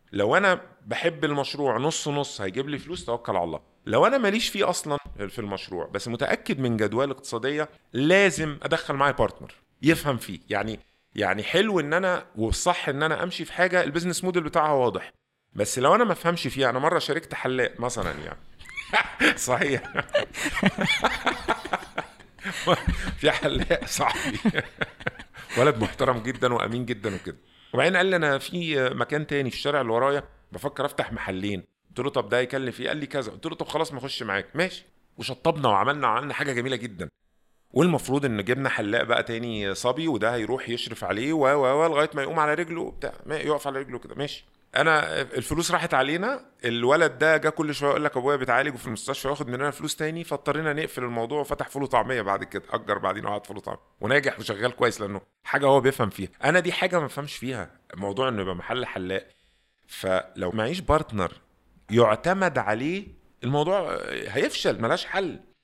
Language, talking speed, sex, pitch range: Arabic, 170 wpm, male, 115-155 Hz